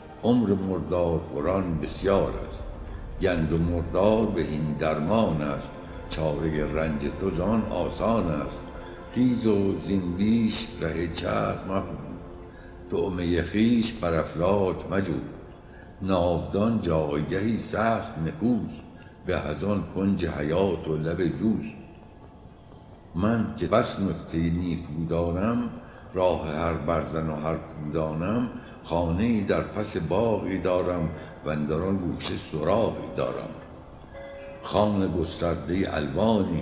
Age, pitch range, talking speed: 60-79, 80-95 Hz, 100 wpm